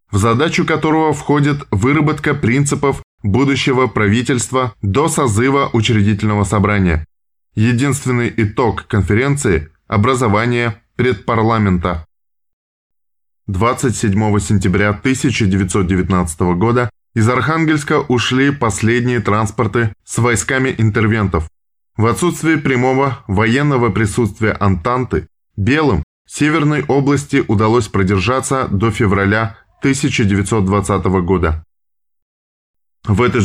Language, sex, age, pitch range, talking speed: Russian, male, 20-39, 100-135 Hz, 85 wpm